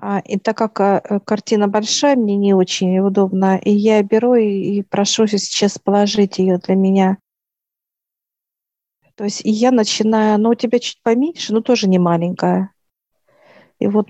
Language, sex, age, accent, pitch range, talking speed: Russian, female, 50-69, native, 195-220 Hz, 150 wpm